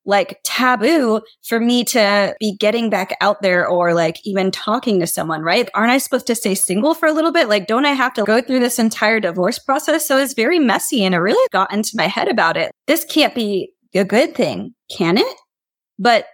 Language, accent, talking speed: English, American, 220 wpm